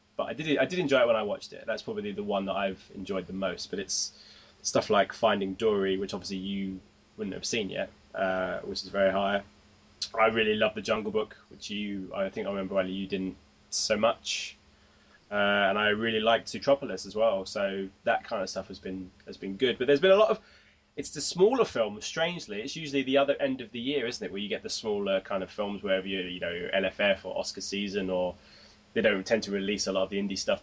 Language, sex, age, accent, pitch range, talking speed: English, male, 20-39, British, 95-135 Hz, 240 wpm